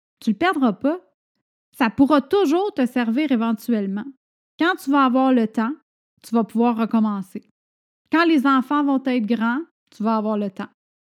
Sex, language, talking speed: female, French, 170 wpm